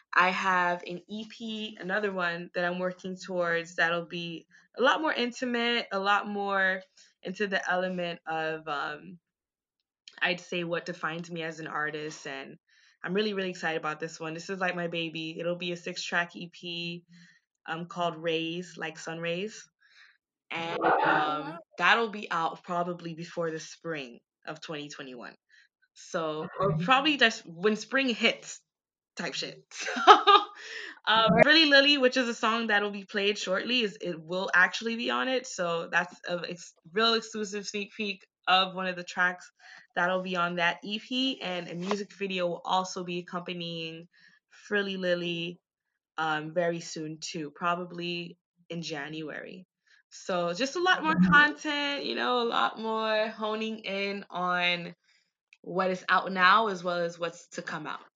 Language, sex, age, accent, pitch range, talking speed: English, female, 20-39, American, 170-210 Hz, 160 wpm